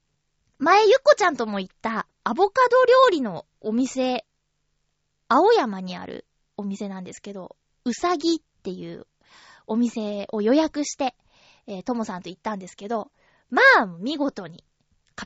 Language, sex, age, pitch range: Japanese, female, 20-39, 205-310 Hz